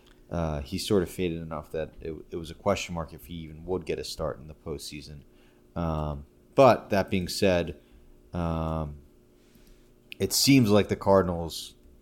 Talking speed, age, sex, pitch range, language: 170 wpm, 30-49, male, 75-95 Hz, English